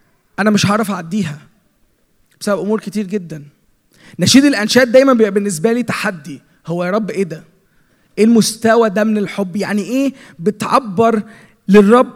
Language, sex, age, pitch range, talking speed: Arabic, male, 20-39, 180-220 Hz, 140 wpm